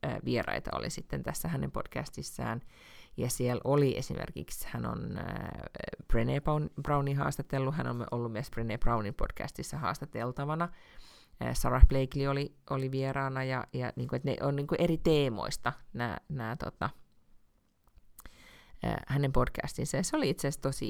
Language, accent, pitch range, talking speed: Finnish, native, 125-145 Hz, 130 wpm